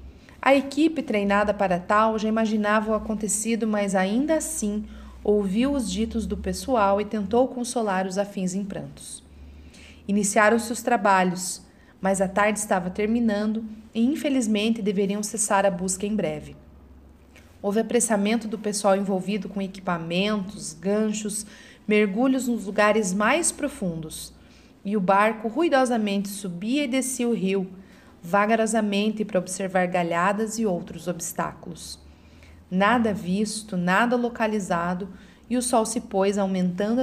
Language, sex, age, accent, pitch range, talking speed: Portuguese, female, 40-59, Brazilian, 190-230 Hz, 130 wpm